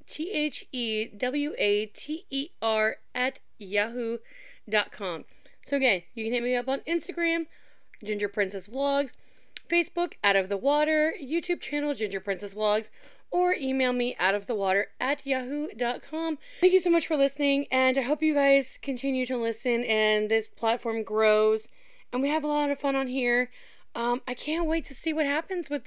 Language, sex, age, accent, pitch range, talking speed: English, female, 20-39, American, 230-300 Hz, 180 wpm